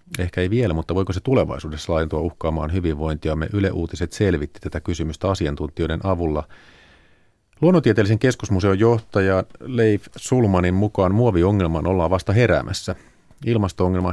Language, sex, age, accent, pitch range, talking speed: Finnish, male, 40-59, native, 80-100 Hz, 120 wpm